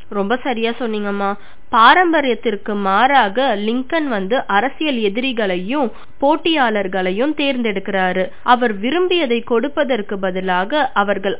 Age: 20-39